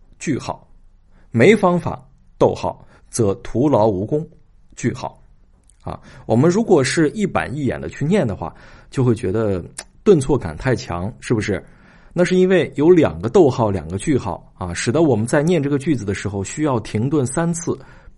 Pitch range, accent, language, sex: 100-150 Hz, native, Chinese, male